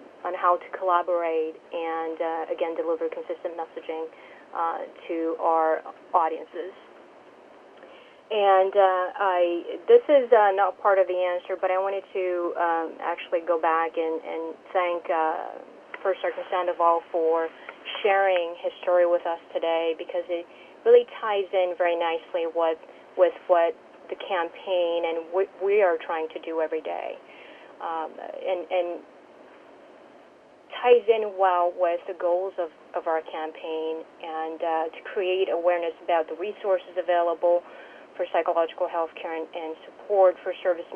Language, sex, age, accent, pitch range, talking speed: English, female, 30-49, American, 165-190 Hz, 145 wpm